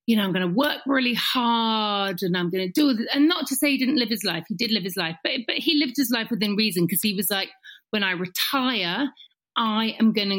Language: English